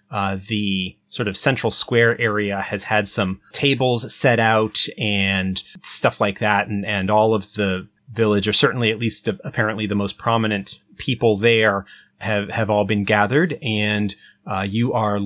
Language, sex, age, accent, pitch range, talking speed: English, male, 30-49, American, 100-125 Hz, 170 wpm